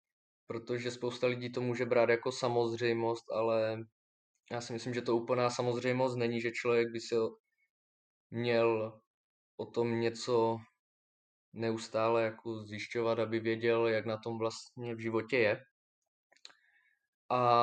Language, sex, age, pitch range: Czech, male, 20-39, 115-130 Hz